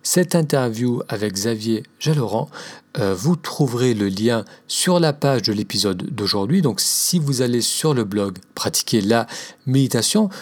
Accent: French